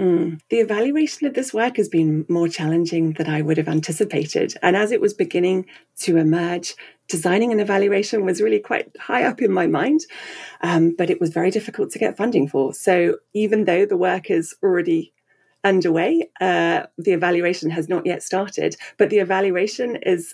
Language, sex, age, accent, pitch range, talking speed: English, female, 30-49, British, 160-210 Hz, 185 wpm